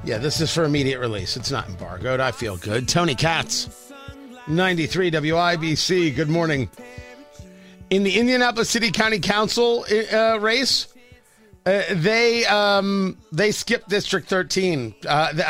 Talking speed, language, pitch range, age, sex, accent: 130 wpm, English, 150-225 Hz, 40-59, male, American